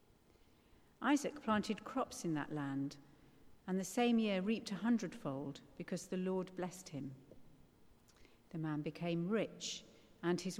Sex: female